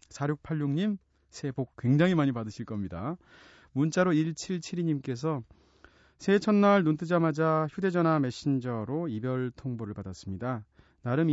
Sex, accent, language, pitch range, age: male, native, Korean, 105-150 Hz, 30-49